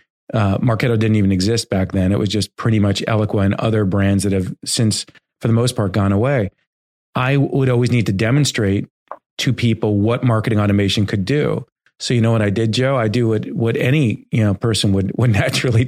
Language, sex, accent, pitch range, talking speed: English, male, American, 100-115 Hz, 205 wpm